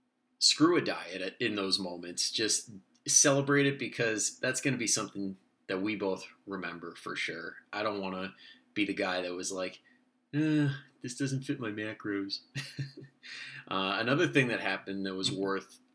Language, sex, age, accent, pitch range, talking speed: English, male, 30-49, American, 100-145 Hz, 170 wpm